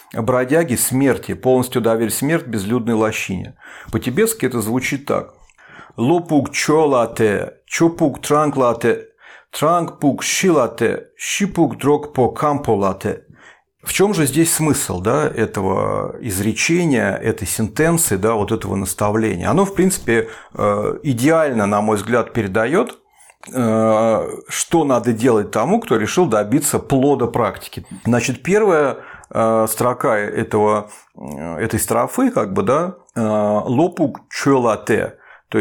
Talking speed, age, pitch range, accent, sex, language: 100 wpm, 40-59, 110-150 Hz, native, male, Russian